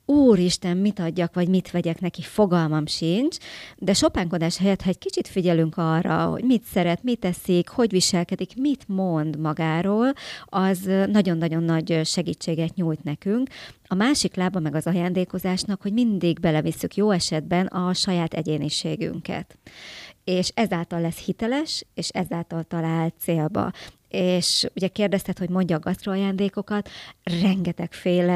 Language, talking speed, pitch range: Hungarian, 135 wpm, 170-195 Hz